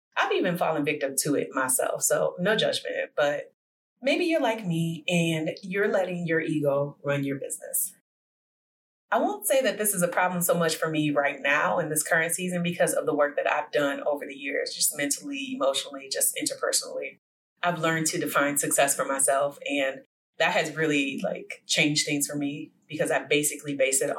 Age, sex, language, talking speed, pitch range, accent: 30-49, female, English, 190 wpm, 145-210 Hz, American